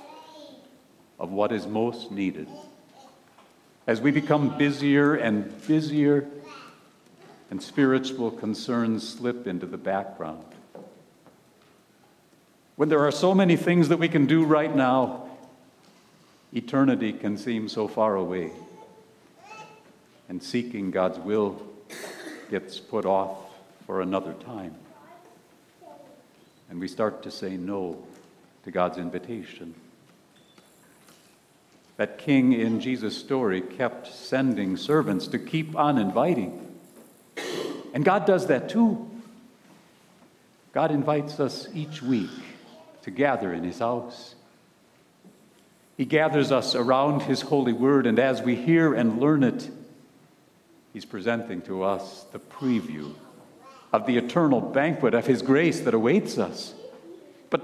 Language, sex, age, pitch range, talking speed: English, male, 60-79, 105-155 Hz, 120 wpm